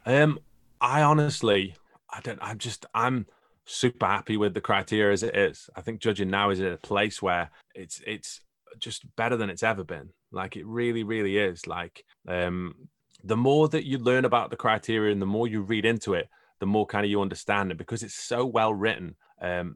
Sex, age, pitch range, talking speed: male, 30-49, 95-115 Hz, 205 wpm